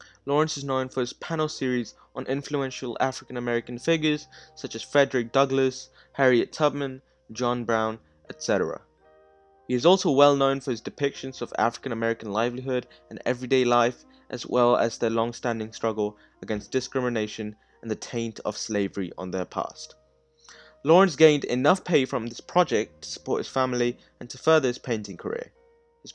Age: 20-39